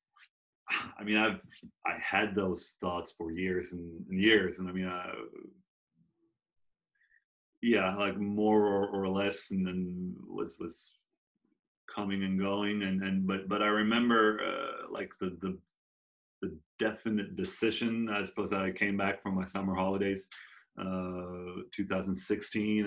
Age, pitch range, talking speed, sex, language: 30-49, 95-105 Hz, 140 wpm, male, English